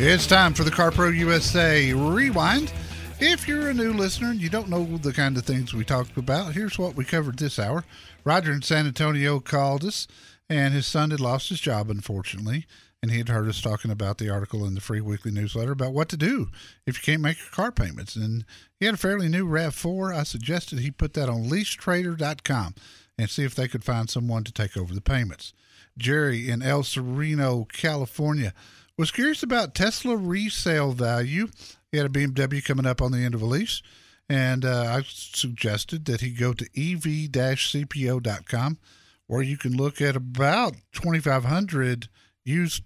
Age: 50-69